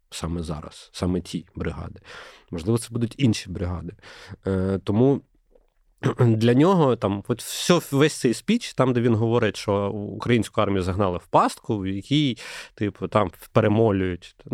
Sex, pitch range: male, 100-125 Hz